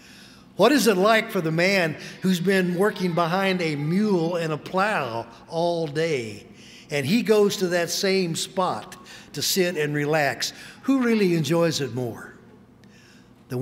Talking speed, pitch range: 155 wpm, 145-190 Hz